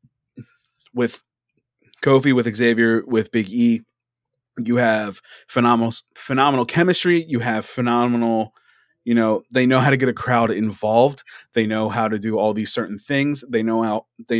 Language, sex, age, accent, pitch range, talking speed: English, male, 20-39, American, 110-130 Hz, 160 wpm